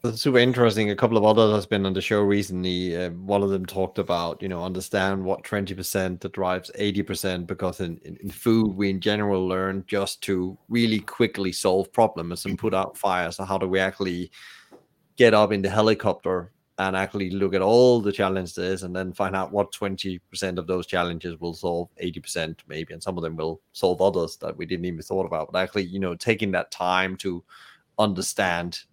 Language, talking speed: English, 200 wpm